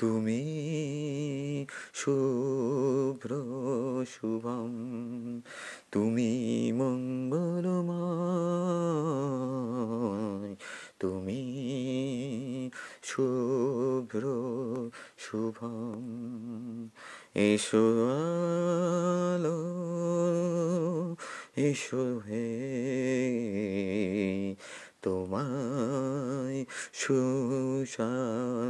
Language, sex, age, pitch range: Bengali, male, 30-49, 120-160 Hz